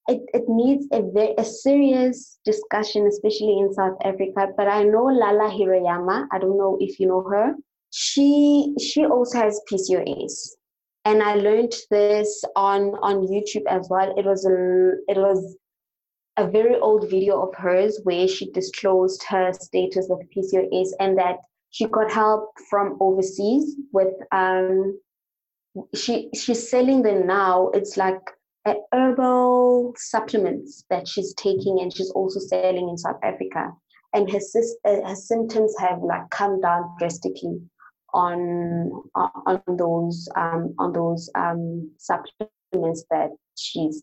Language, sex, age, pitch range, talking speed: English, female, 20-39, 185-215 Hz, 140 wpm